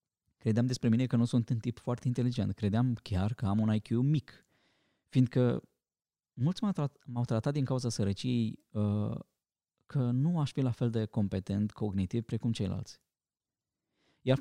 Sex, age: male, 20-39